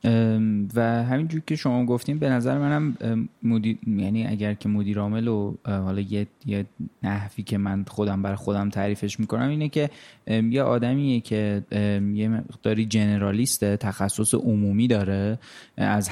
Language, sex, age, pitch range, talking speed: Persian, male, 20-39, 100-115 Hz, 140 wpm